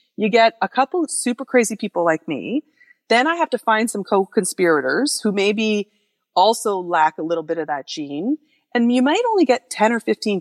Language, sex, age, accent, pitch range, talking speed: English, female, 30-49, American, 180-250 Hz, 200 wpm